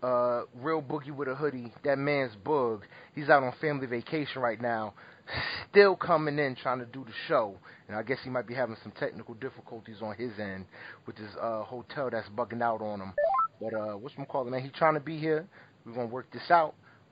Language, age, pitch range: English, 30-49, 120-155 Hz